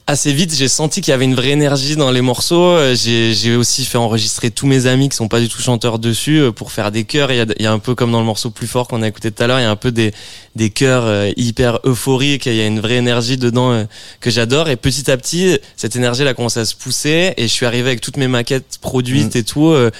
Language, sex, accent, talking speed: French, male, French, 275 wpm